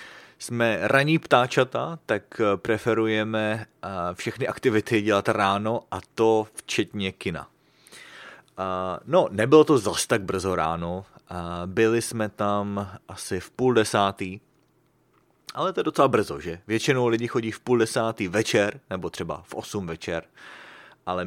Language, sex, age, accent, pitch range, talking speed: English, male, 30-49, Czech, 95-120 Hz, 130 wpm